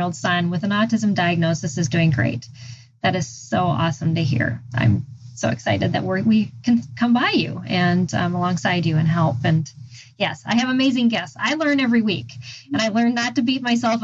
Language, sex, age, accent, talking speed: English, female, 20-39, American, 205 wpm